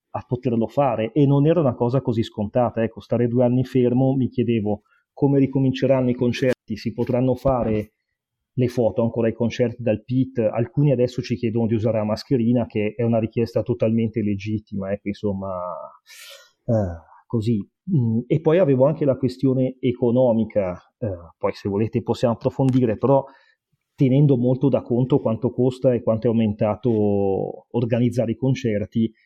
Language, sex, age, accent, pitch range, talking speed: Italian, male, 30-49, native, 110-130 Hz, 155 wpm